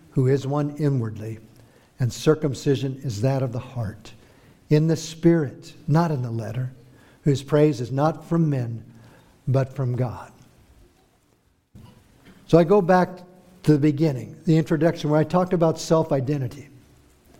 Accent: American